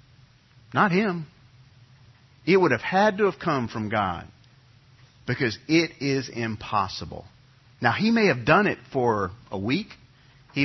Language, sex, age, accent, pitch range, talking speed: English, male, 50-69, American, 110-140 Hz, 140 wpm